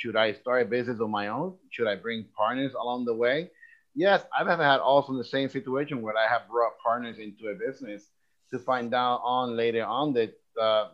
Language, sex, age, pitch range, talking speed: English, male, 30-49, 115-140 Hz, 210 wpm